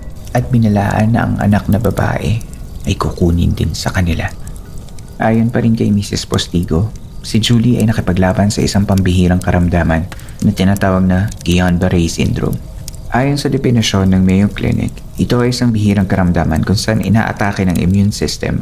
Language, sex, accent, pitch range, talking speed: Filipino, male, native, 95-110 Hz, 155 wpm